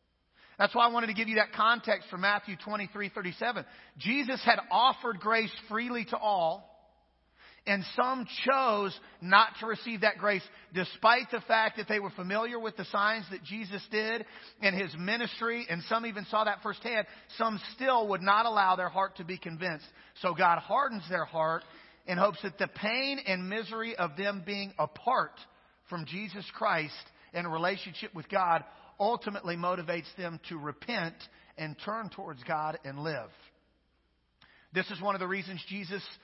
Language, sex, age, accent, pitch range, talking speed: English, male, 40-59, American, 185-225 Hz, 170 wpm